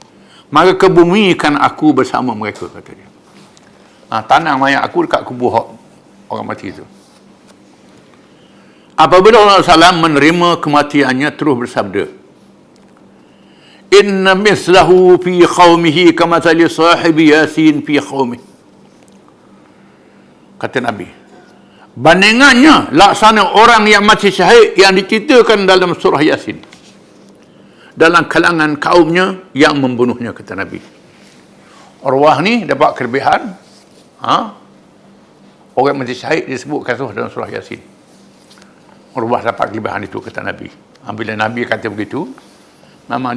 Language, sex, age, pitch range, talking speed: English, male, 60-79, 130-185 Hz, 105 wpm